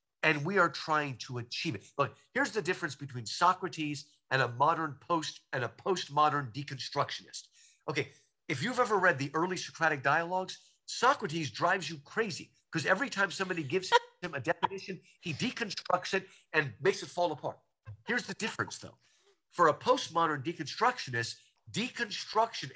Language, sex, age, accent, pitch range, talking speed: English, male, 50-69, American, 135-185 Hz, 155 wpm